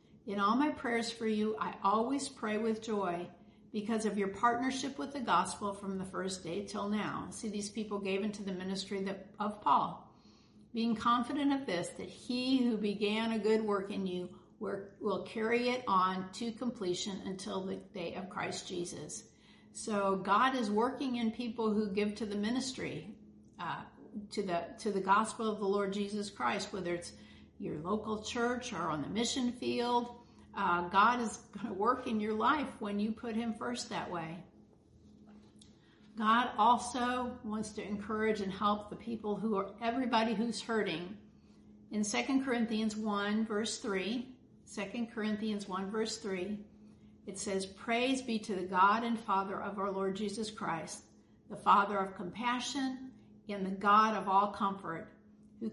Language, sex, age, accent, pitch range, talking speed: English, female, 50-69, American, 195-230 Hz, 165 wpm